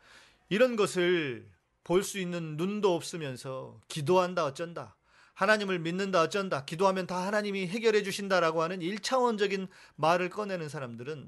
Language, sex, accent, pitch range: Korean, male, native, 135-180 Hz